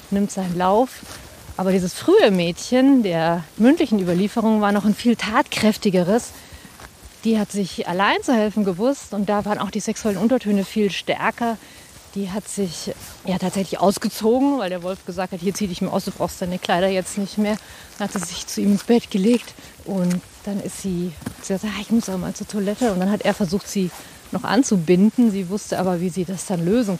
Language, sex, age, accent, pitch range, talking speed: German, female, 30-49, German, 185-220 Hz, 210 wpm